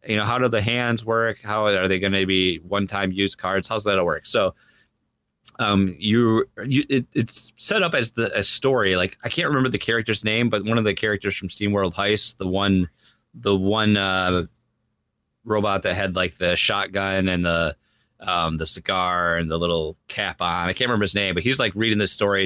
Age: 30-49